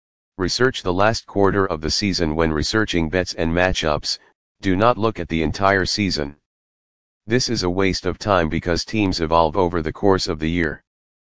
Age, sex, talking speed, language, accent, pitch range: 40-59, male, 180 wpm, English, American, 80-100 Hz